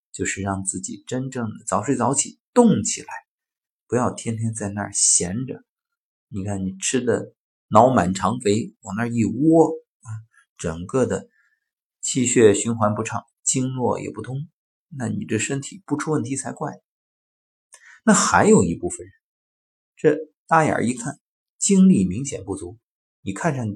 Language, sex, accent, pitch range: Chinese, male, native, 100-155 Hz